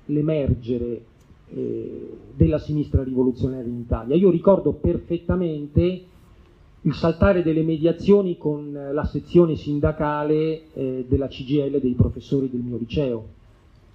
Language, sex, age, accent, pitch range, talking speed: Italian, male, 40-59, native, 125-160 Hz, 110 wpm